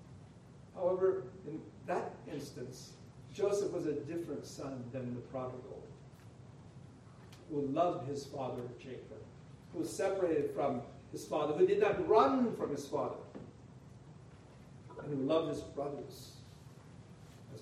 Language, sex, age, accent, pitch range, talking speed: English, male, 50-69, American, 130-160 Hz, 125 wpm